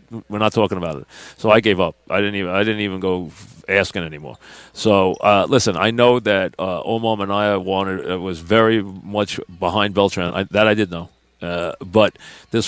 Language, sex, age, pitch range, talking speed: English, male, 40-59, 95-110 Hz, 210 wpm